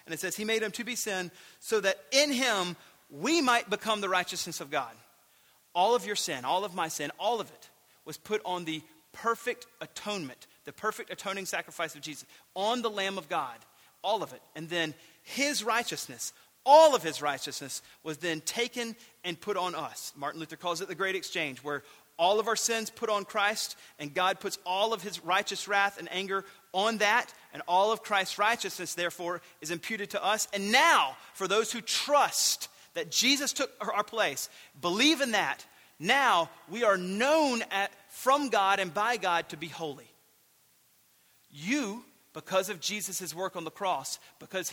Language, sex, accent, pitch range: English, male, American, 175-225 Hz